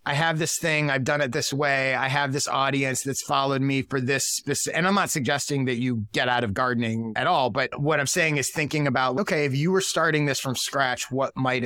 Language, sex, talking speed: English, male, 245 wpm